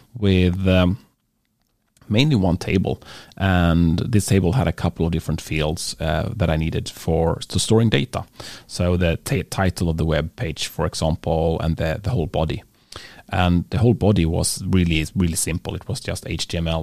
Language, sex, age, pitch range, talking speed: English, male, 30-49, 85-105 Hz, 175 wpm